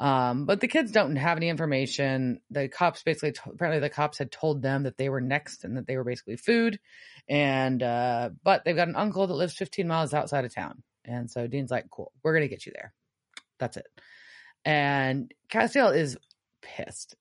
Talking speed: 200 wpm